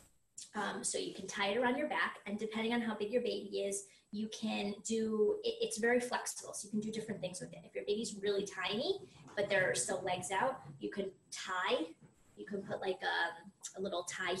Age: 20-39